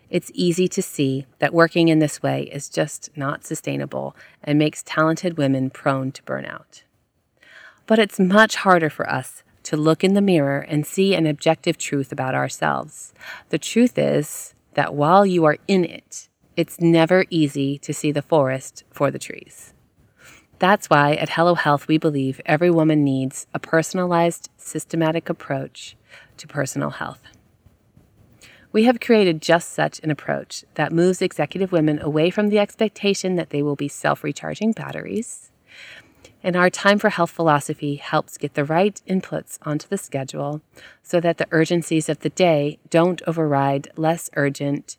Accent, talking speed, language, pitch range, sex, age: American, 160 wpm, English, 140-175 Hz, female, 30-49